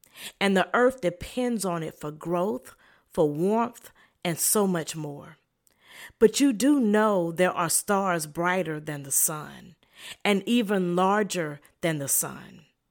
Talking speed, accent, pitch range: 145 wpm, American, 175-230 Hz